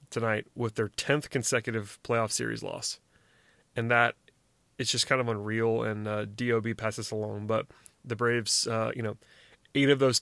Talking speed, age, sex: 170 wpm, 30-49, male